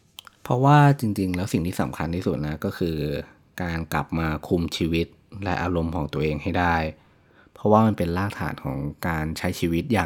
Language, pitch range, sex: Thai, 80-100 Hz, male